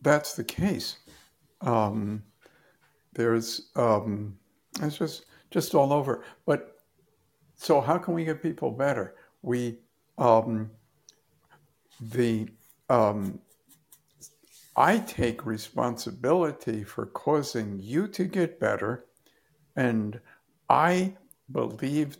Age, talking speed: 60-79, 95 wpm